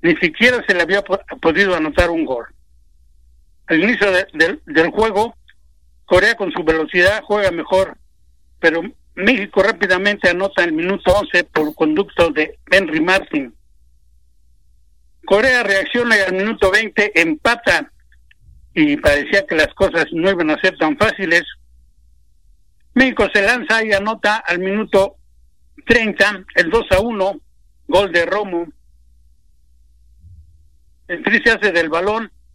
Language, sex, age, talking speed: Spanish, male, 60-79, 130 wpm